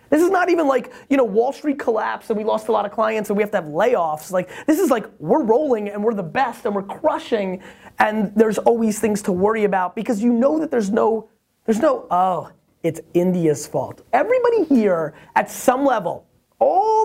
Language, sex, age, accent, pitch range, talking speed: English, male, 30-49, American, 185-245 Hz, 215 wpm